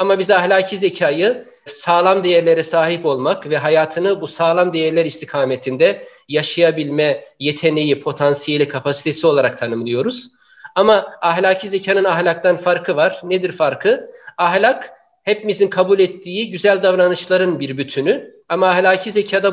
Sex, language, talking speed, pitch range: male, Turkish, 115 wpm, 150-185 Hz